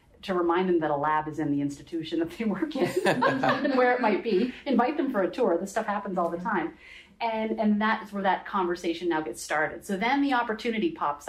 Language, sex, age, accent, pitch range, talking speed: English, female, 30-49, American, 155-195 Hz, 235 wpm